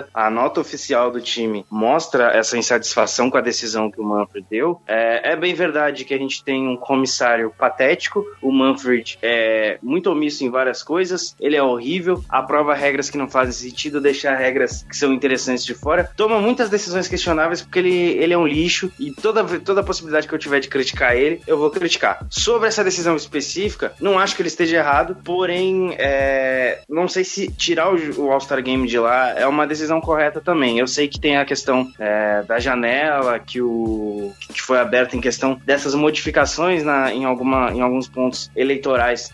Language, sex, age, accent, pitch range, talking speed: Portuguese, male, 20-39, Brazilian, 125-160 Hz, 190 wpm